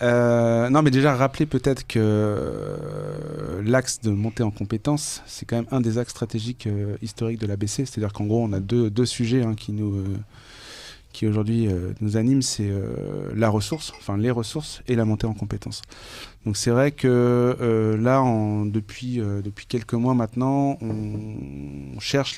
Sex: male